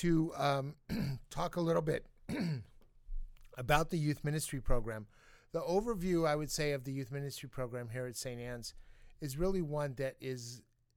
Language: English